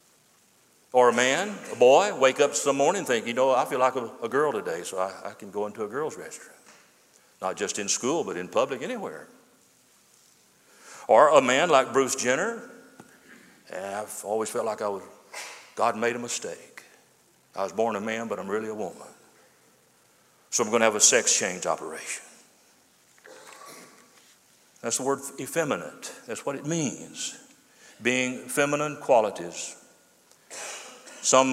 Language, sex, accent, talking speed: English, male, American, 160 wpm